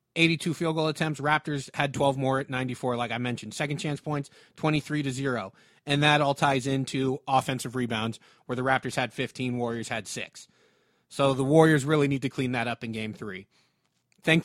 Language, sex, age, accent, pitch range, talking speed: English, male, 30-49, American, 130-165 Hz, 195 wpm